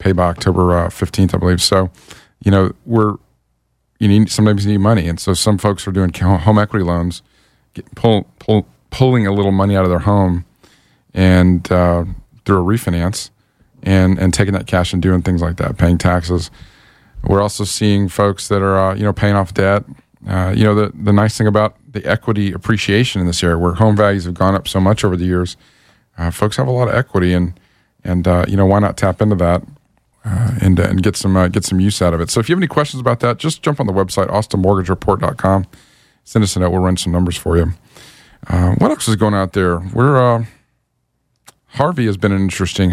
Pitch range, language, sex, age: 90-110 Hz, English, male, 40-59